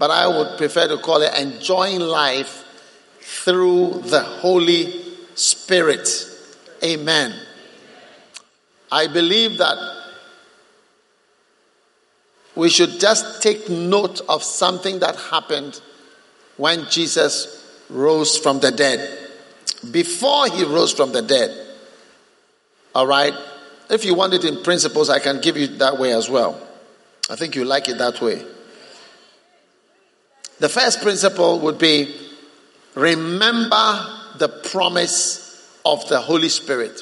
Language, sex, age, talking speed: English, male, 50-69, 115 wpm